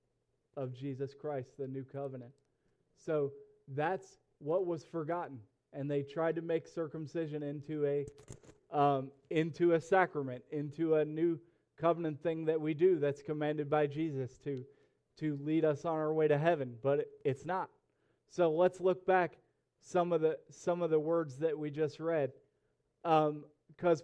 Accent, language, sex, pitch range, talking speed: American, English, male, 145-175 Hz, 155 wpm